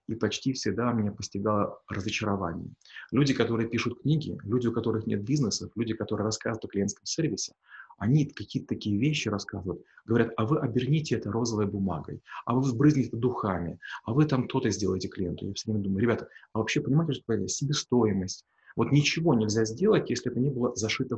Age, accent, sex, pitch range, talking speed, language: 30-49, native, male, 105-130 Hz, 180 wpm, Russian